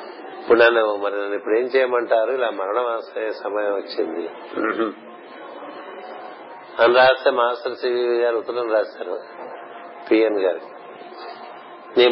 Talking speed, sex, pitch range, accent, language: 105 wpm, male, 115-185 Hz, native, Telugu